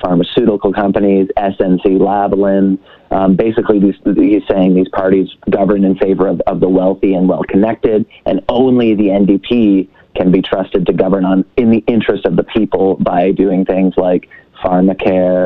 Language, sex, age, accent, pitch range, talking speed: English, male, 30-49, American, 95-100 Hz, 160 wpm